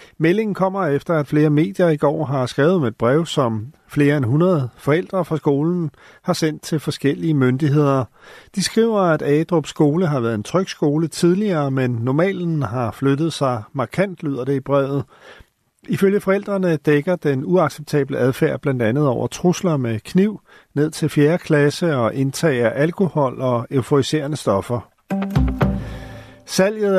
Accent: native